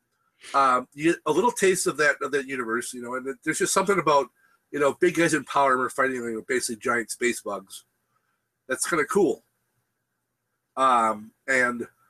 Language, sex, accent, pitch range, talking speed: English, male, American, 125-175 Hz, 195 wpm